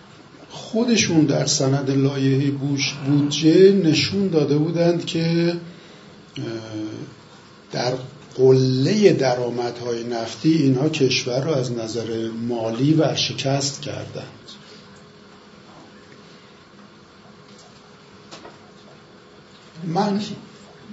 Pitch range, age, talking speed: 115-160 Hz, 50-69, 70 wpm